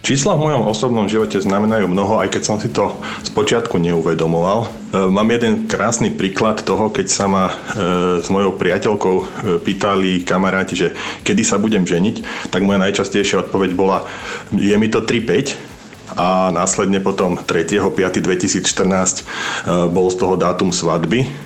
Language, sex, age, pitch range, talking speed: Slovak, male, 40-59, 95-120 Hz, 140 wpm